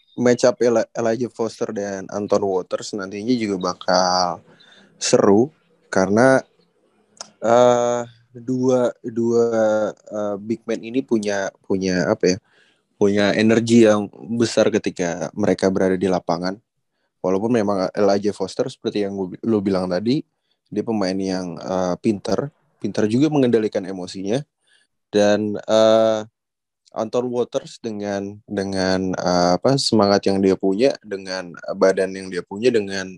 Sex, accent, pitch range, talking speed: male, native, 95-115 Hz, 130 wpm